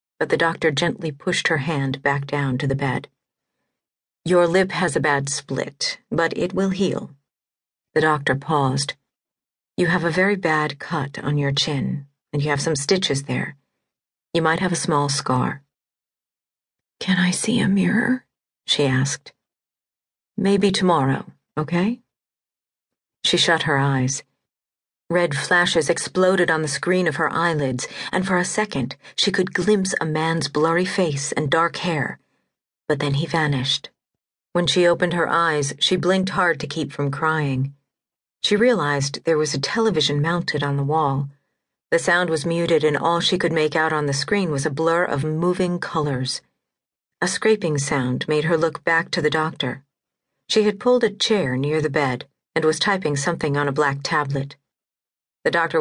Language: English